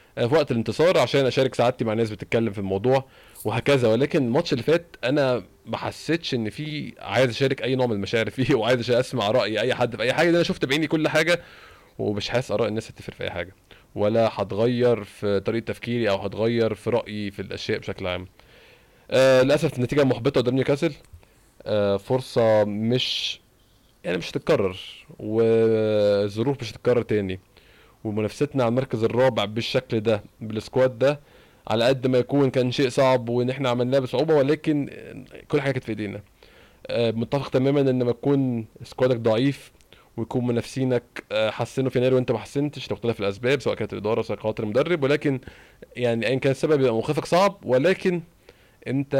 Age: 20-39